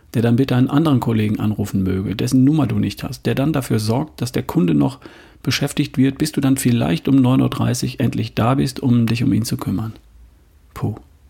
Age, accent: 40-59, German